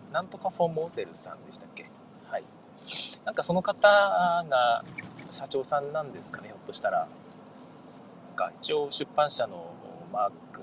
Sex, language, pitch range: male, Japanese, 145-205 Hz